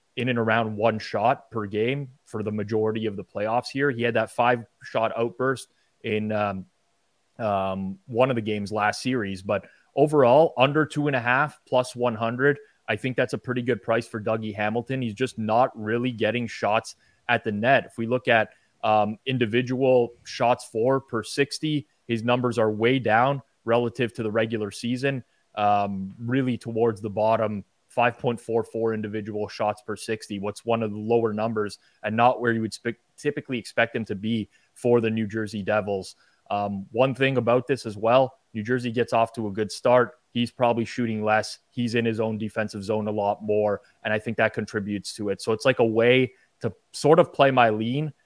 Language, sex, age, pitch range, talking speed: English, male, 20-39, 105-125 Hz, 190 wpm